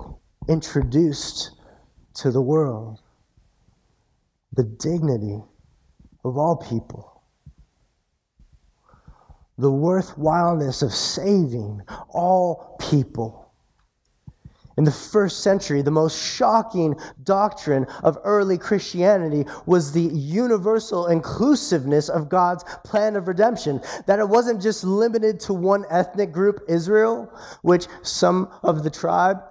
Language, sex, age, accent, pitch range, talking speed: English, male, 30-49, American, 150-210 Hz, 100 wpm